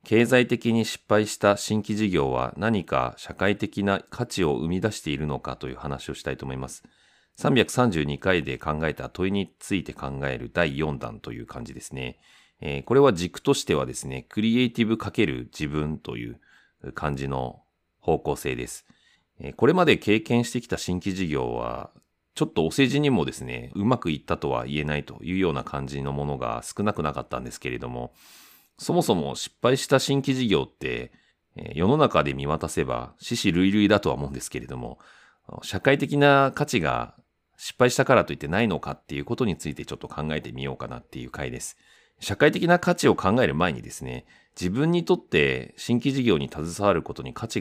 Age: 40-59